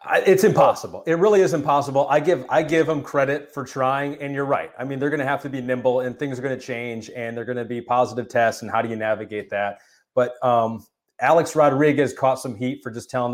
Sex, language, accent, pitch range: male, English, American, 115-135 Hz